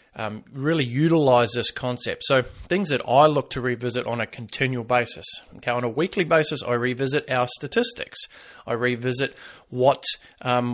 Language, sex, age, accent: English, male, 30-49, Australian